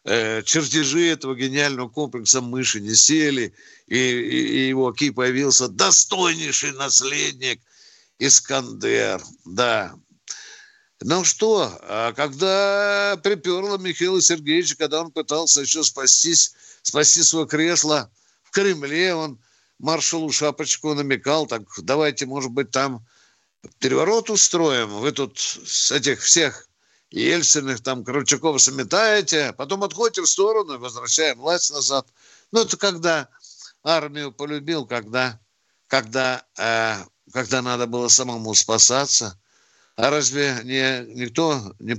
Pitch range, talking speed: 125-170 Hz, 115 wpm